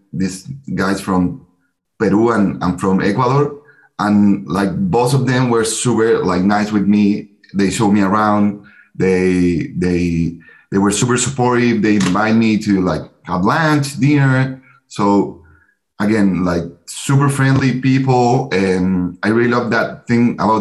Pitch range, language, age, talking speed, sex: 100-120 Hz, English, 30-49, 145 wpm, male